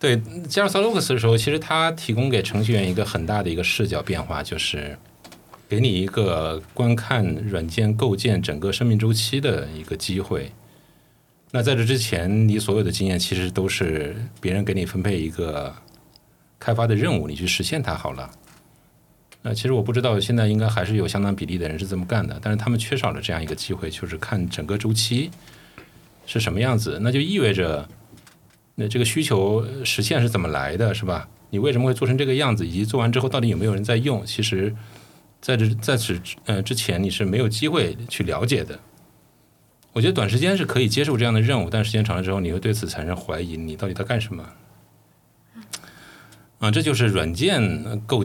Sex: male